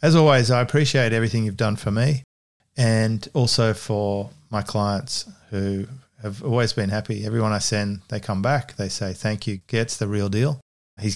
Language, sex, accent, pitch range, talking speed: English, male, Australian, 100-125 Hz, 185 wpm